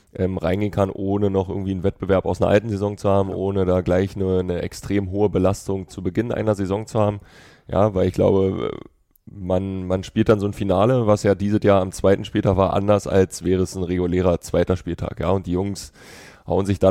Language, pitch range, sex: German, 90-100 Hz, male